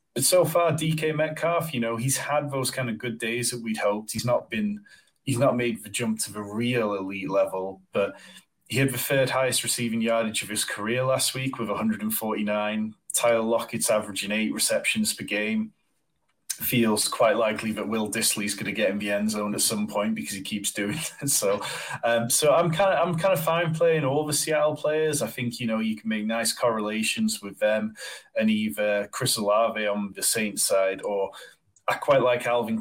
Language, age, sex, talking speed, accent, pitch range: English, 20-39, male, 205 wpm, British, 100-125 Hz